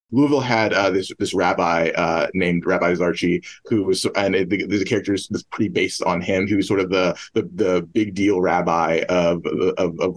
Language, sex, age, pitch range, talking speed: English, male, 20-39, 90-115 Hz, 205 wpm